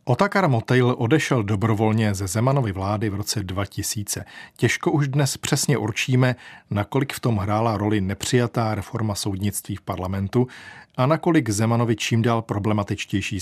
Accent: native